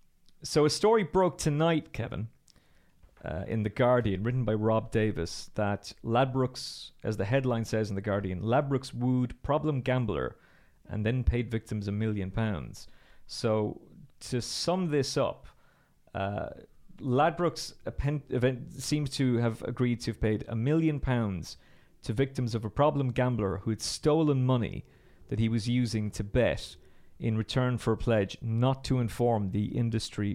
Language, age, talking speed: English, 40-59, 155 wpm